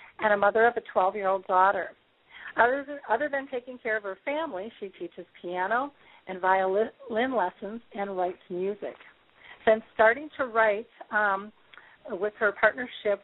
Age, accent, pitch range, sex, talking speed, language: 50-69, American, 190-230 Hz, female, 140 wpm, English